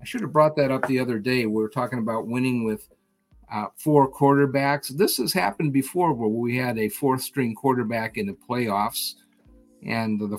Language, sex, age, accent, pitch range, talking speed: English, male, 50-69, American, 110-145 Hz, 190 wpm